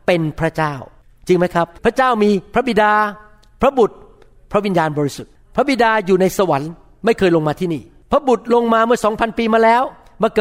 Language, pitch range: Thai, 180-255 Hz